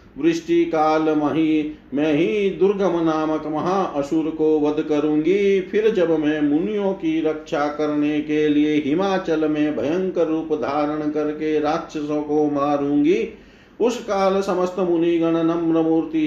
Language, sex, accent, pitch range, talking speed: Hindi, male, native, 150-180 Hz, 125 wpm